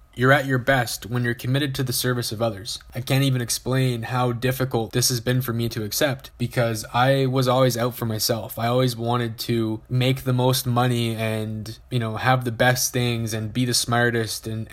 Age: 20-39